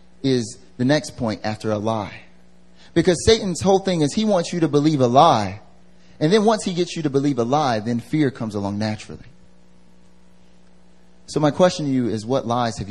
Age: 30-49